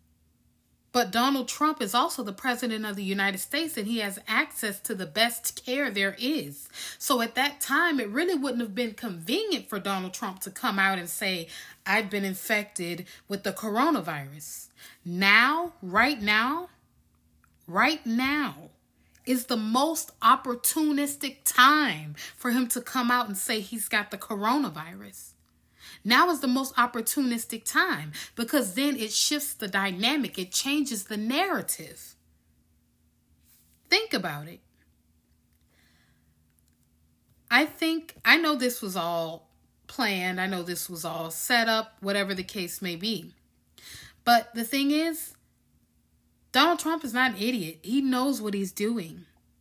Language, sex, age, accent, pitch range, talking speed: English, female, 30-49, American, 185-265 Hz, 145 wpm